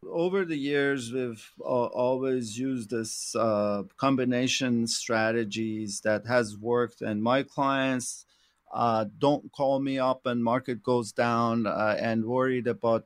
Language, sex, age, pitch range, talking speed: English, male, 40-59, 115-140 Hz, 140 wpm